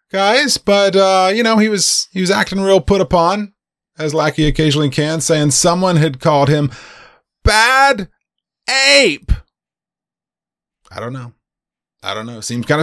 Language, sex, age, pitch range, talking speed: English, male, 30-49, 100-150 Hz, 145 wpm